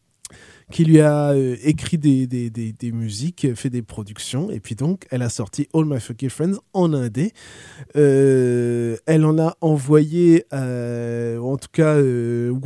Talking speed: 150 wpm